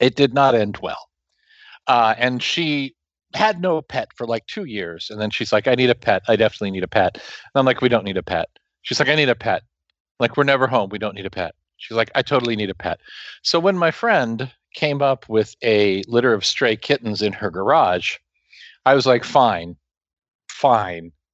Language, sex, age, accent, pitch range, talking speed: English, male, 40-59, American, 105-145 Hz, 220 wpm